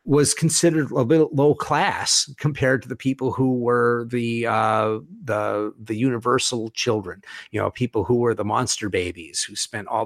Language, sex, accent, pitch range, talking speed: English, male, American, 110-135 Hz, 175 wpm